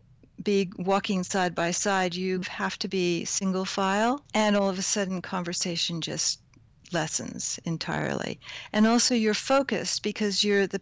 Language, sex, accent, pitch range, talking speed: English, female, American, 175-210 Hz, 150 wpm